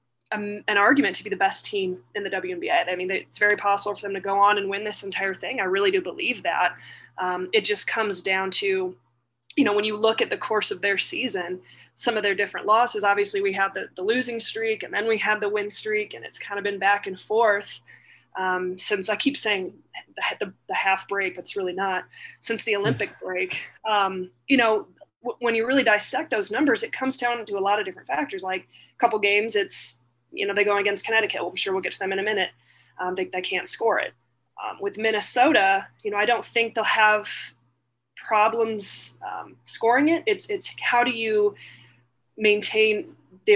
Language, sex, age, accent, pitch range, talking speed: English, female, 20-39, American, 190-225 Hz, 220 wpm